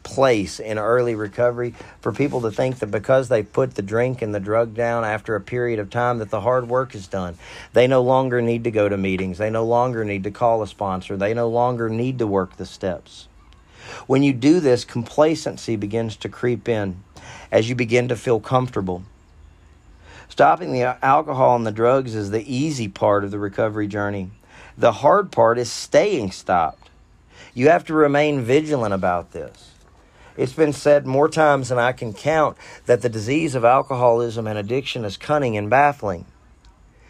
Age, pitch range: 40-59, 105-130 Hz